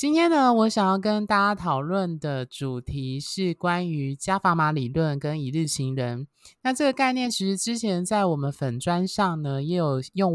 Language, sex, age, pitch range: Chinese, male, 20-39, 145-200 Hz